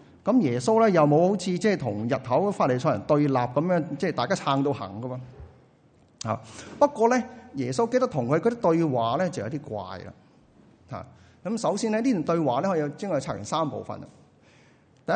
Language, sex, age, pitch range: Chinese, male, 30-49, 125-165 Hz